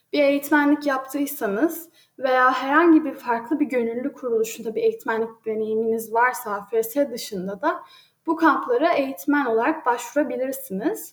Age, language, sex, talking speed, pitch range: 10-29, Turkish, female, 120 wpm, 245-320 Hz